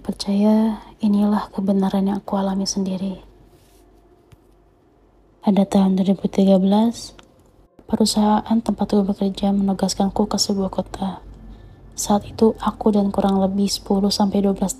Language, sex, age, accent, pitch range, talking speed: Indonesian, female, 20-39, native, 190-210 Hz, 100 wpm